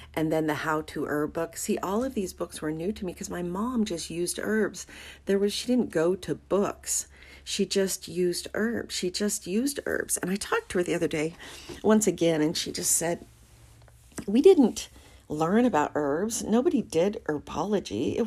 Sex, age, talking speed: female, 40-59, 195 wpm